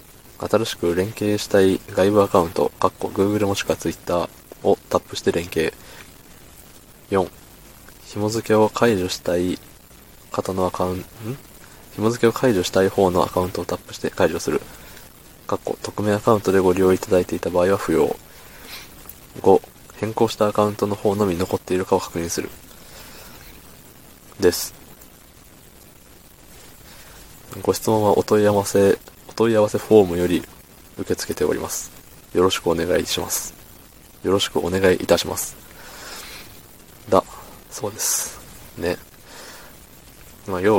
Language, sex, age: Japanese, male, 20-39